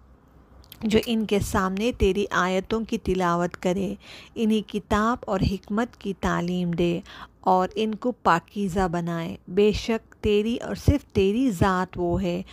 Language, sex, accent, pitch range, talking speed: English, female, Indian, 180-220 Hz, 145 wpm